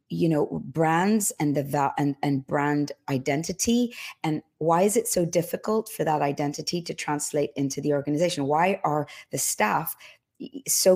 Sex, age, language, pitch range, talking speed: female, 40-59, English, 140-185 Hz, 160 wpm